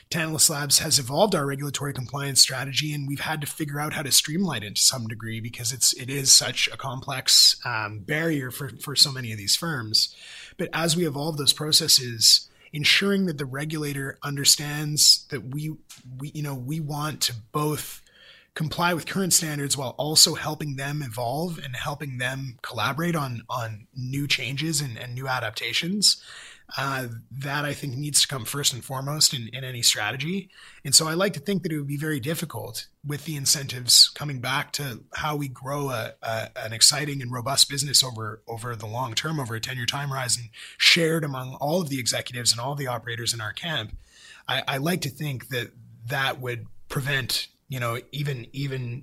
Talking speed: 190 wpm